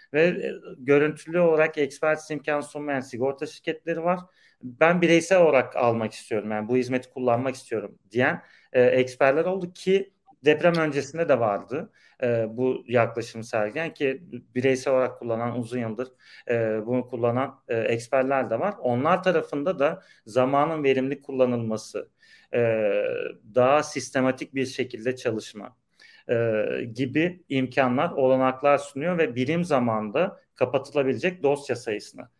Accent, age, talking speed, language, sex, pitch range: native, 40-59, 125 wpm, Turkish, male, 120-150 Hz